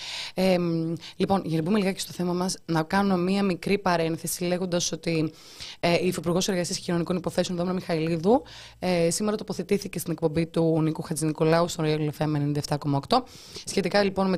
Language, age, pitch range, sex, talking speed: Greek, 20-39, 160-210 Hz, female, 165 wpm